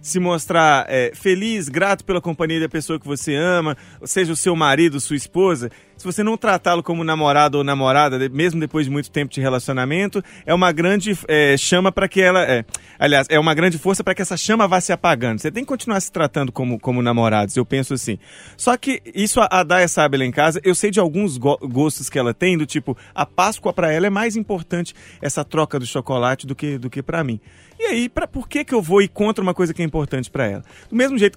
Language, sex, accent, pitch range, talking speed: Portuguese, male, Brazilian, 140-190 Hz, 235 wpm